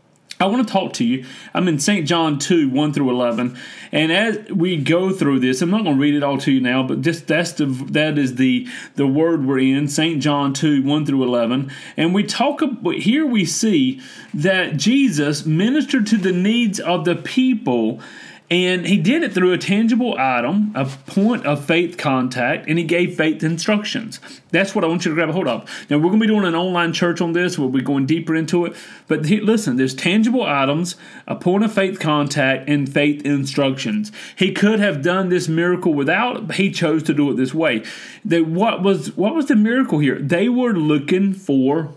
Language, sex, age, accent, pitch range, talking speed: English, male, 30-49, American, 145-205 Hz, 215 wpm